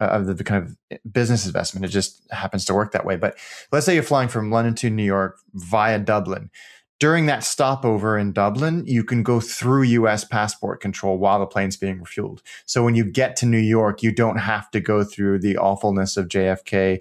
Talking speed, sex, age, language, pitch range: 210 wpm, male, 30-49, English, 100-120 Hz